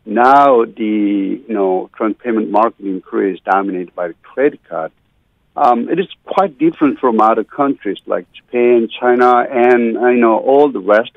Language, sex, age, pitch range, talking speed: English, male, 60-79, 110-175 Hz, 170 wpm